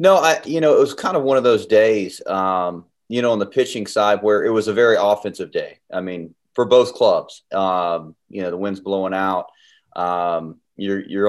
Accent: American